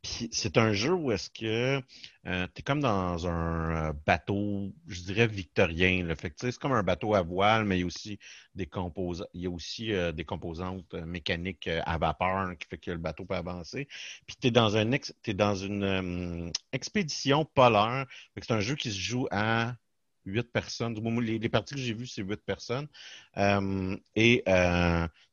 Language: French